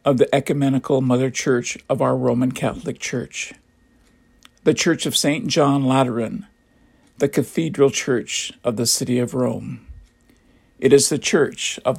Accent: American